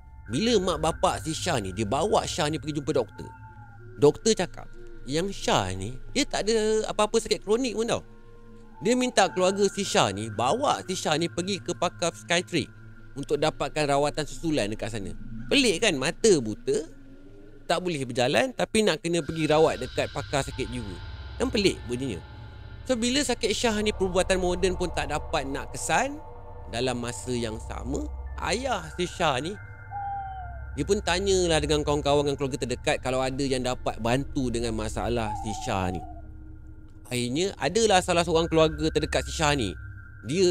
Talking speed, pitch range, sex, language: 165 wpm, 115-175 Hz, male, Malay